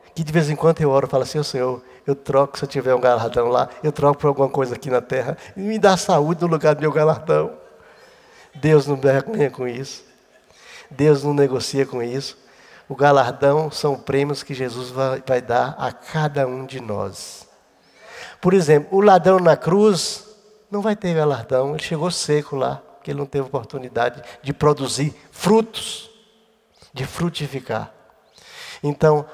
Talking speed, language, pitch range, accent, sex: 175 wpm, Portuguese, 130-165 Hz, Brazilian, male